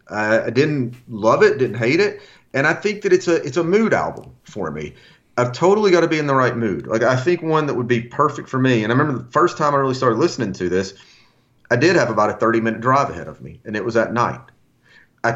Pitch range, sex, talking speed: 105-130 Hz, male, 260 wpm